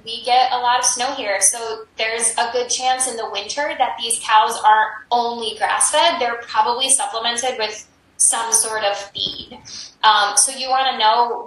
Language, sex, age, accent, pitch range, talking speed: English, female, 10-29, American, 215-265 Hz, 185 wpm